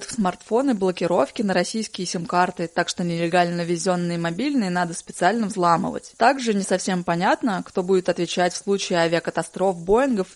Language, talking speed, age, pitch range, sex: Russian, 145 wpm, 20-39, 180-215 Hz, female